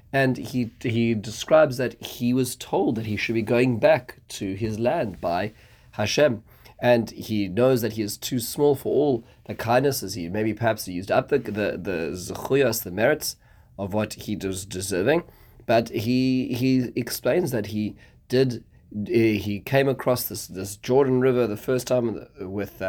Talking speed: 170 wpm